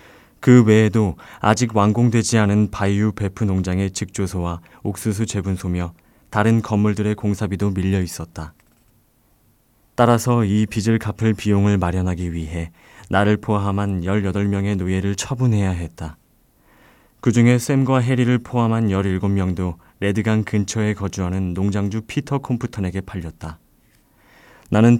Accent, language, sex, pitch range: native, Korean, male, 95-115 Hz